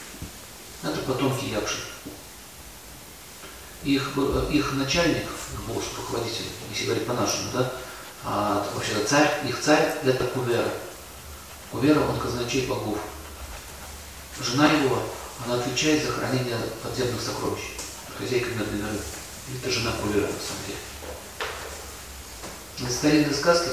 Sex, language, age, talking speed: male, Russian, 40-59, 100 wpm